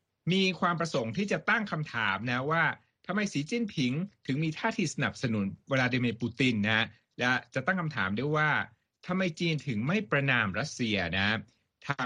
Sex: male